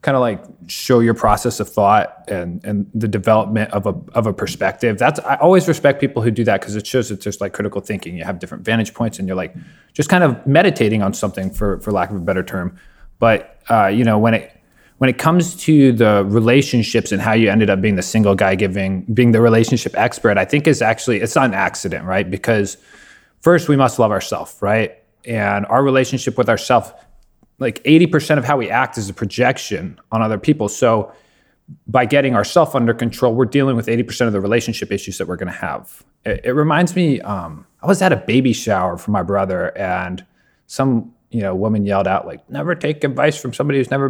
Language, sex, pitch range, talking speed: English, male, 105-135 Hz, 220 wpm